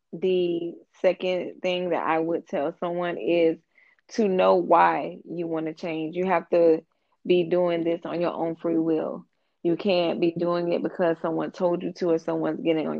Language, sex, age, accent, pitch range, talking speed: English, female, 20-39, American, 160-180 Hz, 190 wpm